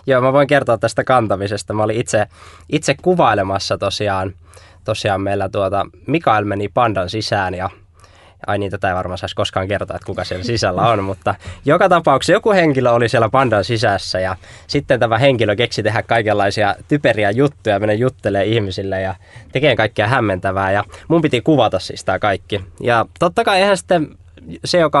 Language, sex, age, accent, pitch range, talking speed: Finnish, male, 20-39, native, 95-130 Hz, 175 wpm